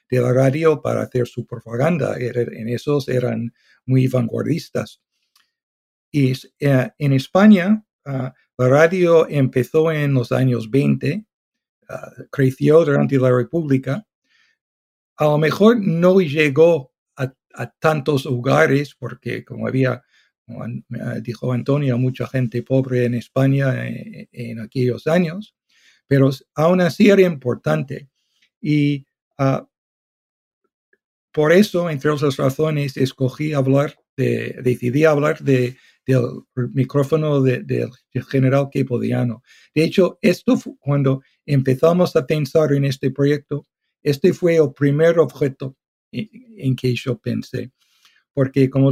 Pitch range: 125-155 Hz